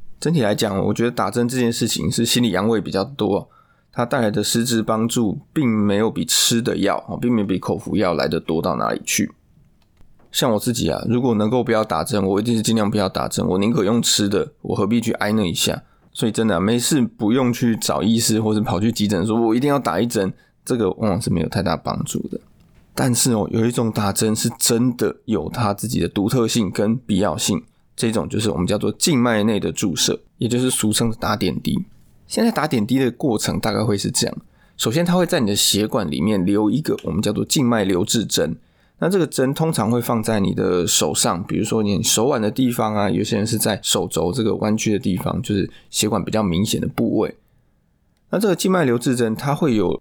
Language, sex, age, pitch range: Chinese, male, 20-39, 105-120 Hz